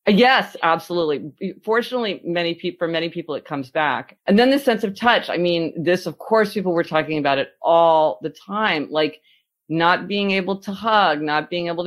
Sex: female